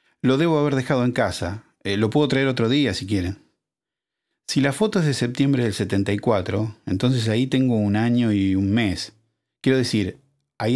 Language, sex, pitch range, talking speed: Spanish, male, 100-130 Hz, 185 wpm